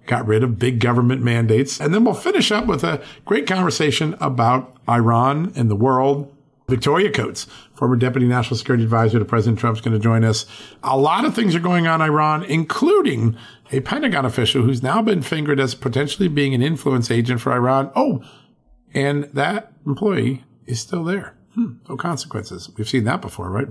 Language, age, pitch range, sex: English, 50-69, 115-150 Hz, male